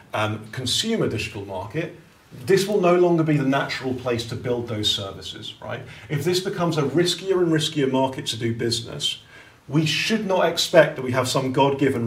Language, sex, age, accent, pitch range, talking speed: English, male, 40-59, British, 110-150 Hz, 195 wpm